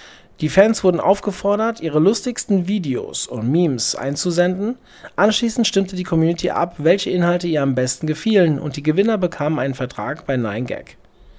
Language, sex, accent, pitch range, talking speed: German, male, German, 140-190 Hz, 155 wpm